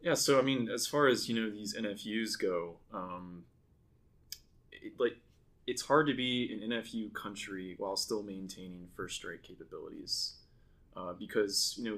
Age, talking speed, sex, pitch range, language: 20-39, 160 wpm, male, 95-115 Hz, English